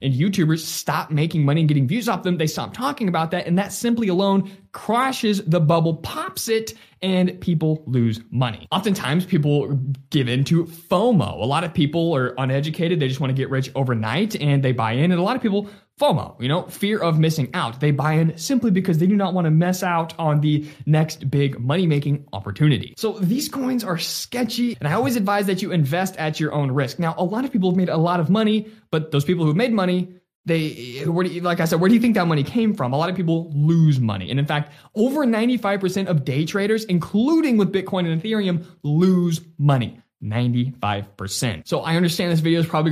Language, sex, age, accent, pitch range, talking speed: English, male, 20-39, American, 135-185 Hz, 220 wpm